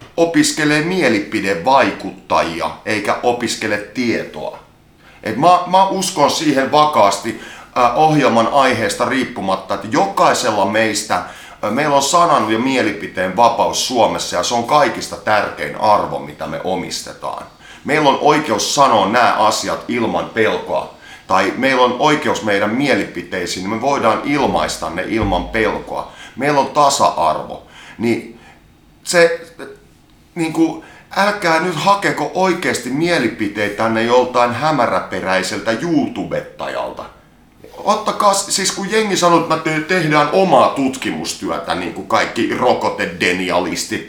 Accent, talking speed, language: native, 120 wpm, Finnish